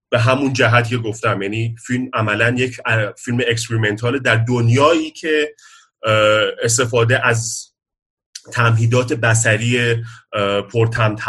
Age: 30-49